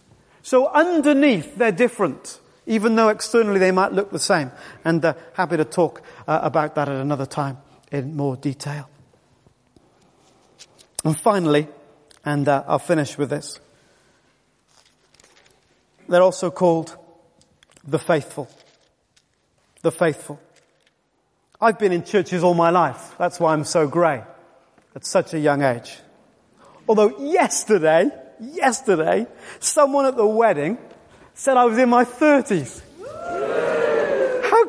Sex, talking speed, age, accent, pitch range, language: male, 125 wpm, 40-59, British, 155-250 Hz, English